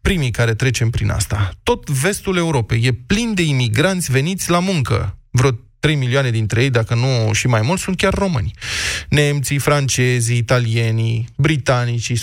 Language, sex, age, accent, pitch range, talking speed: Romanian, male, 20-39, native, 120-165 Hz, 155 wpm